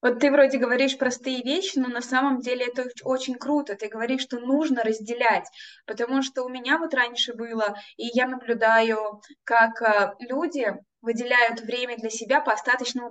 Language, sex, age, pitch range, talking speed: Russian, female, 20-39, 215-265 Hz, 165 wpm